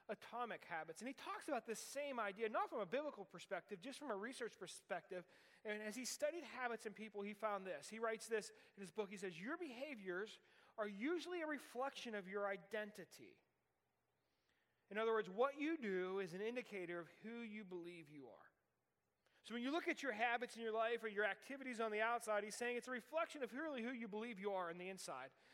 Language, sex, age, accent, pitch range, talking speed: English, male, 30-49, American, 195-255 Hz, 215 wpm